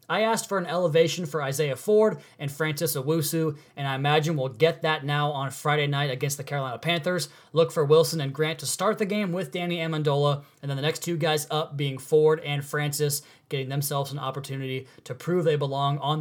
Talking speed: 210 wpm